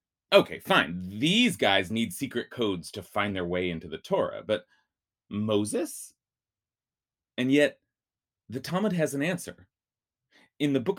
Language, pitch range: English, 110-155 Hz